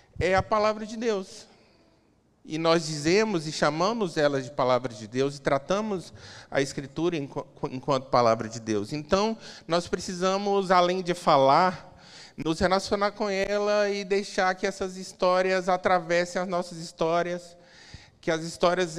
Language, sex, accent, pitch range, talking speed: Portuguese, male, Brazilian, 155-195 Hz, 140 wpm